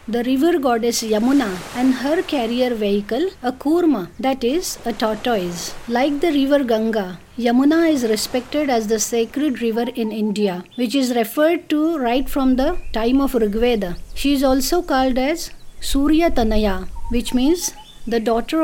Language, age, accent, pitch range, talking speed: English, 50-69, Indian, 230-295 Hz, 155 wpm